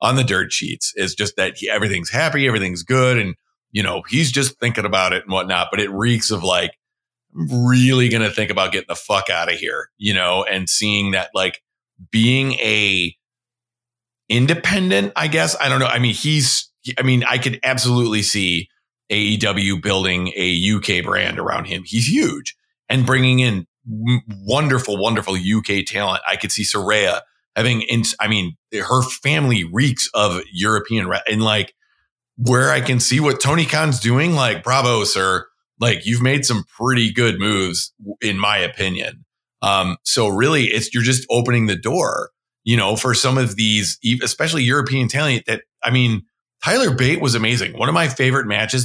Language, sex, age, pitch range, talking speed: English, male, 40-59, 105-130 Hz, 180 wpm